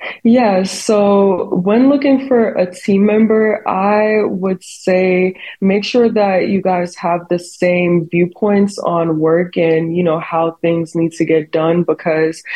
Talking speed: 155 wpm